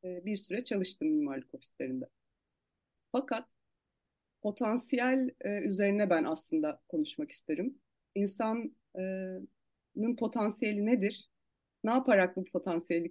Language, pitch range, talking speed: Turkish, 175-255 Hz, 85 wpm